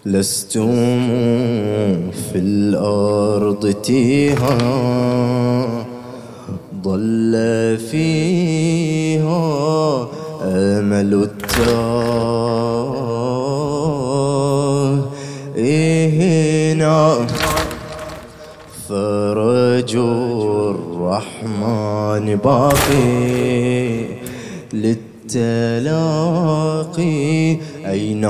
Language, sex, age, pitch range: English, male, 20-39, 110-140 Hz